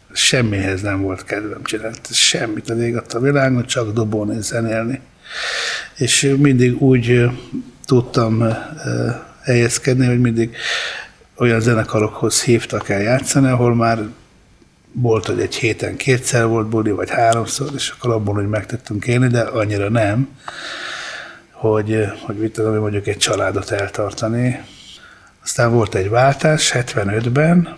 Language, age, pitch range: Hungarian, 60-79, 110-125 Hz